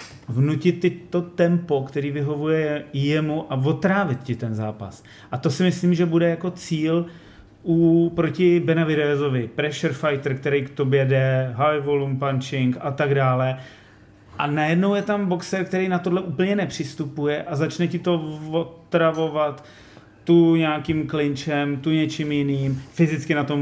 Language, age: Czech, 30-49